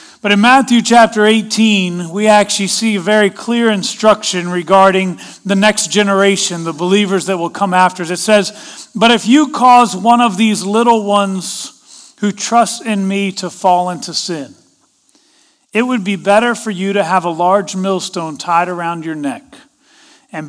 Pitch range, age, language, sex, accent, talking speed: 170-230 Hz, 40-59, English, male, American, 165 wpm